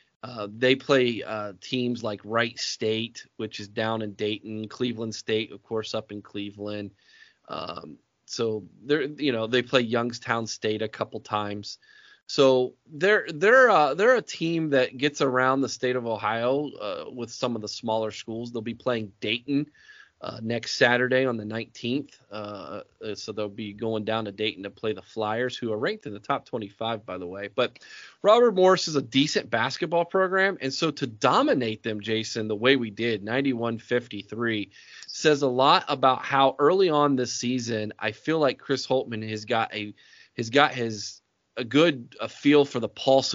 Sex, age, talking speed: male, 30-49, 180 wpm